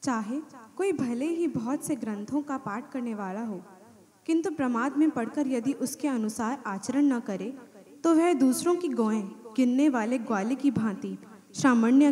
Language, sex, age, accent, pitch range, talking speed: Hindi, female, 20-39, native, 225-285 Hz, 165 wpm